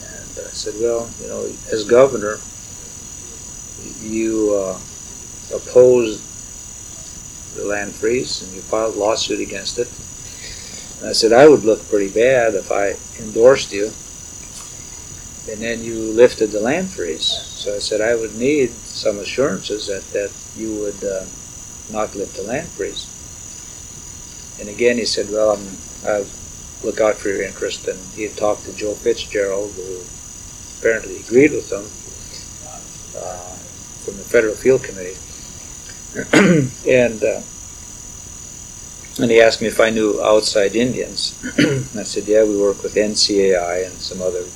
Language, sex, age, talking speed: English, male, 50-69, 145 wpm